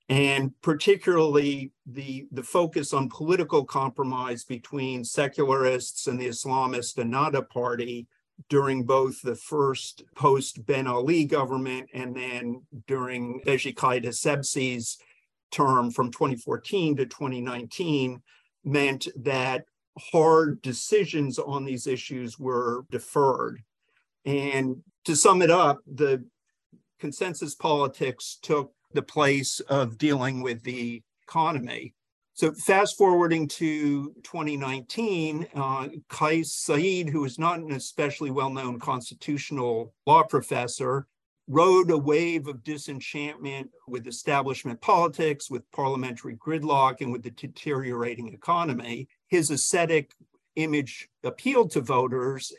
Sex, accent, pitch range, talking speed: male, American, 125-150 Hz, 110 wpm